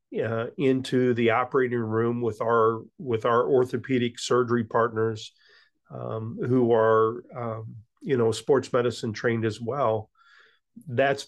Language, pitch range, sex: English, 115-135 Hz, male